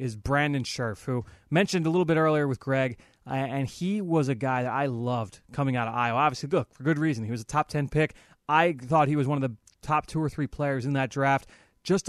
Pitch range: 130-155 Hz